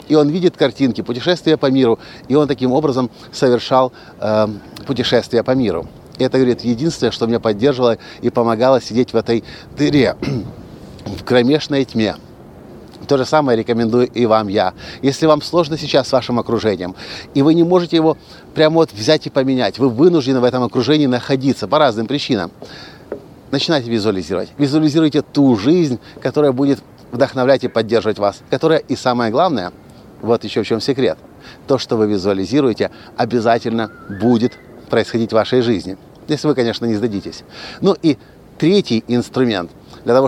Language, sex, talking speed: Russian, male, 155 wpm